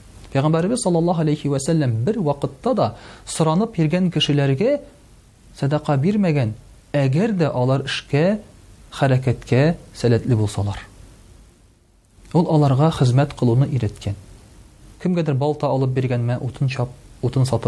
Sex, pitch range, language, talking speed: male, 110-145 Hz, Russian, 120 wpm